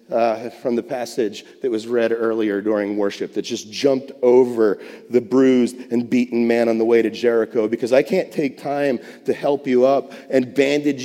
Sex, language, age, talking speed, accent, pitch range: male, English, 30-49, 190 wpm, American, 120-170 Hz